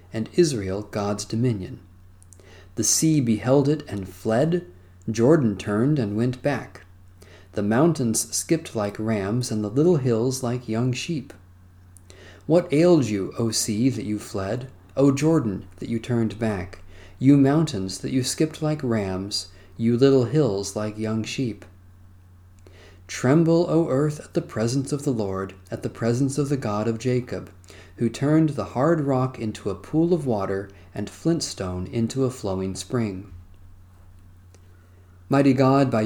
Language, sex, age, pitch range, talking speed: English, male, 40-59, 95-130 Hz, 150 wpm